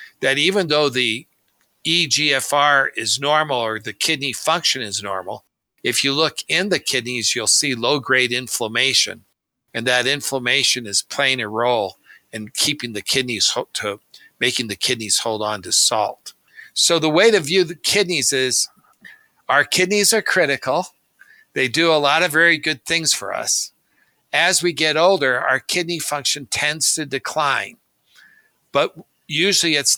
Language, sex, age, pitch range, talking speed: English, male, 60-79, 115-155 Hz, 160 wpm